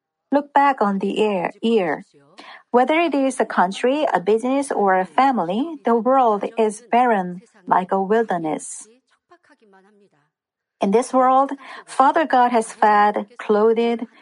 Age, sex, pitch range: 50-69, female, 190-250 Hz